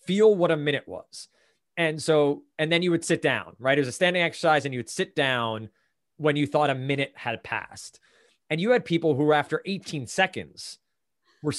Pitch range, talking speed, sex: 130-165 Hz, 205 wpm, male